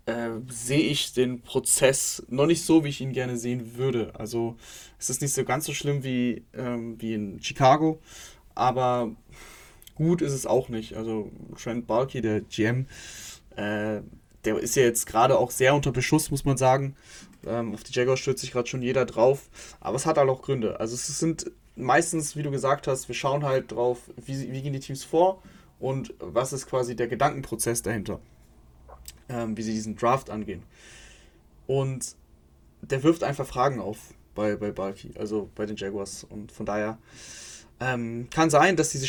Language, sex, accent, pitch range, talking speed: German, male, German, 115-140 Hz, 180 wpm